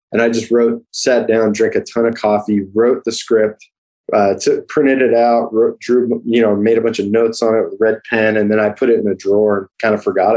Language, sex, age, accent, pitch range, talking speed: English, male, 20-39, American, 100-125 Hz, 250 wpm